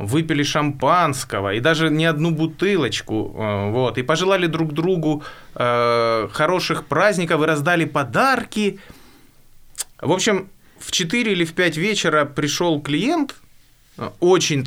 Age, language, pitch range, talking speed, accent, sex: 20-39, Ukrainian, 130-185 Hz, 115 wpm, native, male